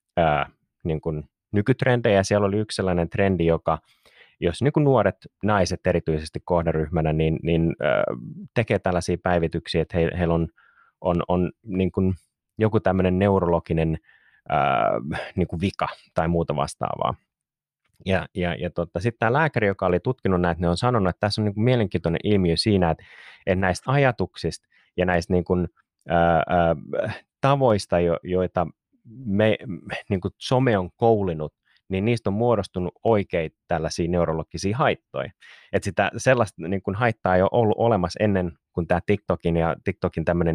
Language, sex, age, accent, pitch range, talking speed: Finnish, male, 30-49, native, 85-105 Hz, 145 wpm